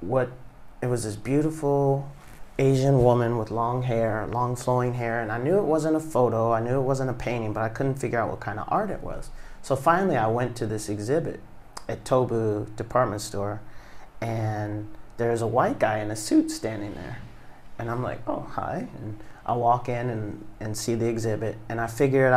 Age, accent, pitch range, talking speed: 30-49, American, 110-130 Hz, 200 wpm